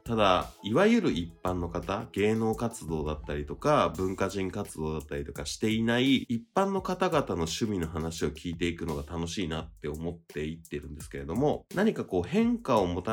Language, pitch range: Japanese, 80-125 Hz